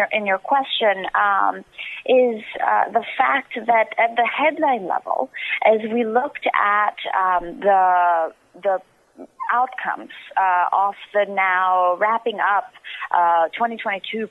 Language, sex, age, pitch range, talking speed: English, female, 30-49, 180-230 Hz, 120 wpm